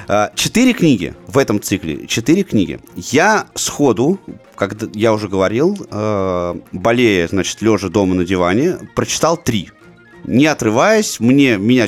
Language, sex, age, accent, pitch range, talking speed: Russian, male, 30-49, native, 95-150 Hz, 125 wpm